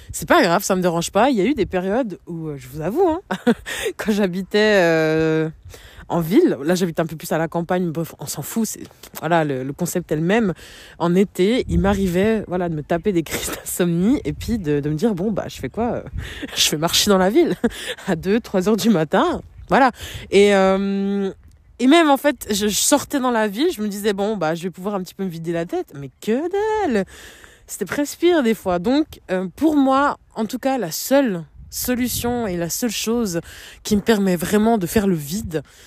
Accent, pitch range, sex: French, 165-220 Hz, female